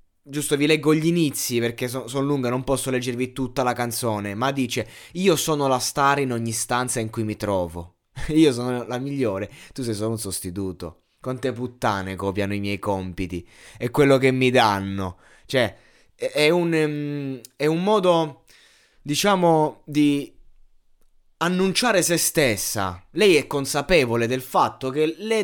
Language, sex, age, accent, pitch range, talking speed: Italian, male, 20-39, native, 120-175 Hz, 160 wpm